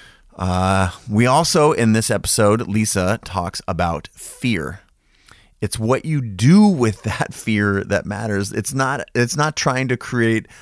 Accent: American